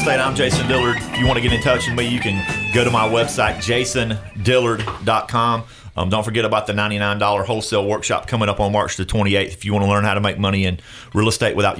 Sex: male